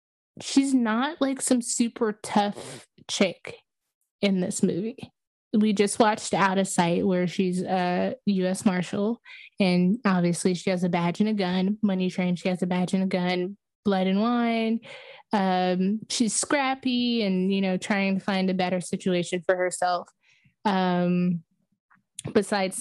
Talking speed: 155 wpm